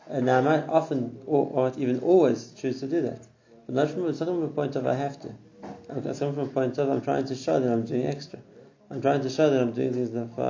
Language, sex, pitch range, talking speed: English, male, 120-140 Hz, 245 wpm